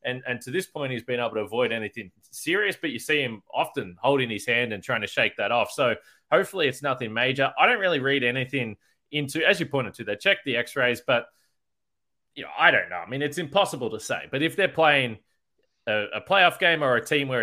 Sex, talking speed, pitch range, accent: male, 240 wpm, 125-150 Hz, Australian